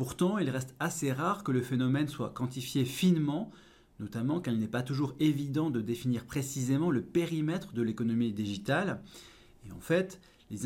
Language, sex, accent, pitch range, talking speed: French, male, French, 115-160 Hz, 170 wpm